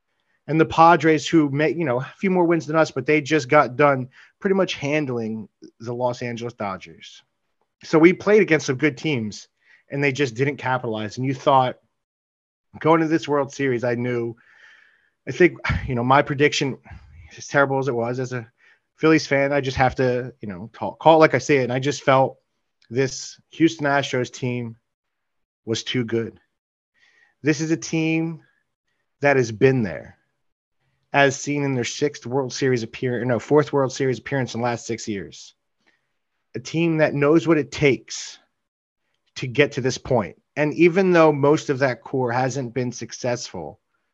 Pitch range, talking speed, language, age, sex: 120-150 Hz, 180 wpm, English, 30-49, male